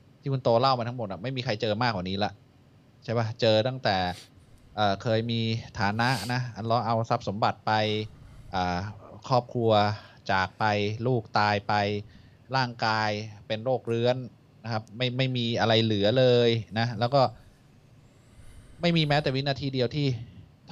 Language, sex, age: Thai, male, 20-39